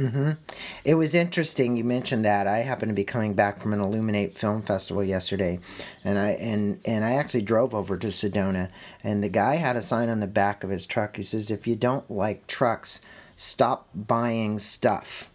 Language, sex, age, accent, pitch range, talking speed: English, male, 40-59, American, 105-130 Hz, 200 wpm